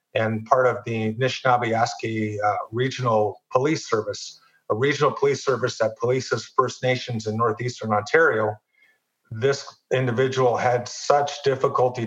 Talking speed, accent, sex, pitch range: 120 wpm, American, male, 110-130 Hz